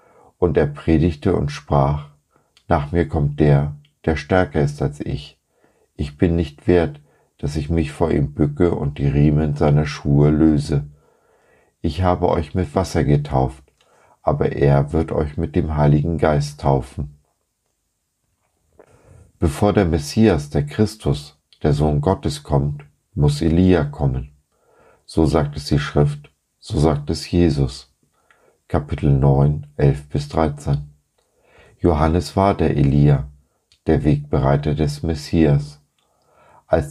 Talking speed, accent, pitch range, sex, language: 130 wpm, German, 70-80 Hz, male, German